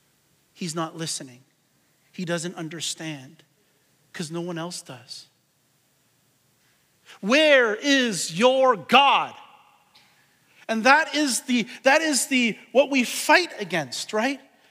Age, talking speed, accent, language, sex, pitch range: 40-59, 110 wpm, American, English, male, 175-270 Hz